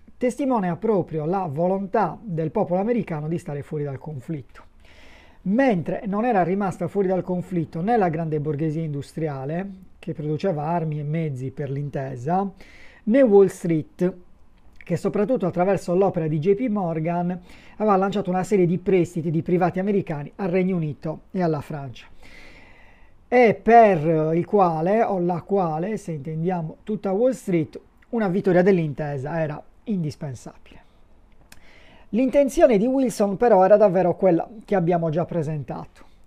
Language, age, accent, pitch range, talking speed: Italian, 40-59, native, 160-205 Hz, 140 wpm